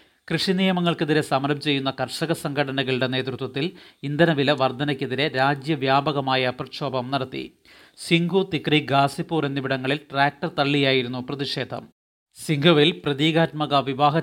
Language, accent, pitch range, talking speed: Malayalam, native, 135-155 Hz, 90 wpm